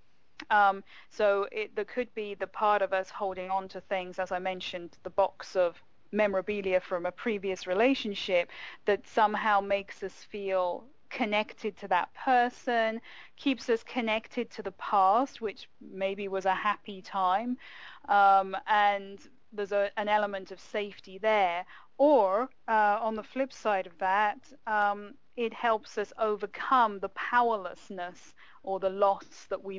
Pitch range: 190-215 Hz